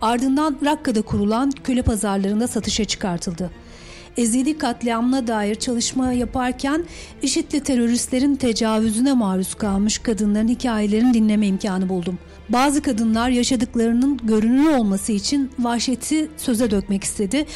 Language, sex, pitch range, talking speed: Turkish, female, 210-275 Hz, 110 wpm